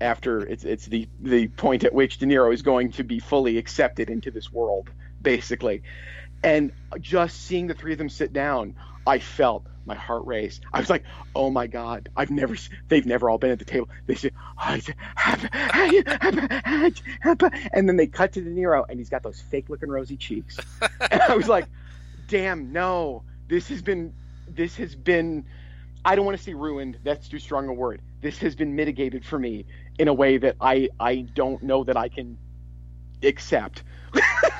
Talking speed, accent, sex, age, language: 185 wpm, American, male, 40-59, English